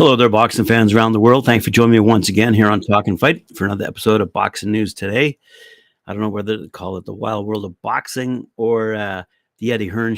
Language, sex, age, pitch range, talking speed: English, male, 50-69, 100-115 Hz, 250 wpm